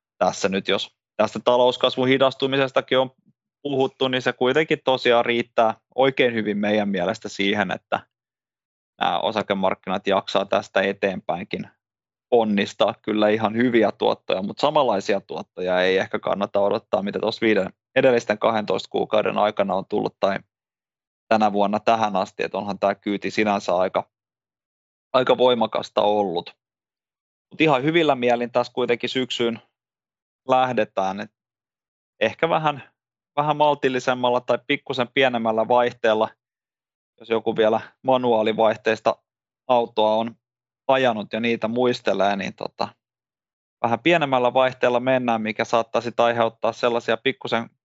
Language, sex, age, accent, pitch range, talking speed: Finnish, male, 20-39, native, 110-130 Hz, 120 wpm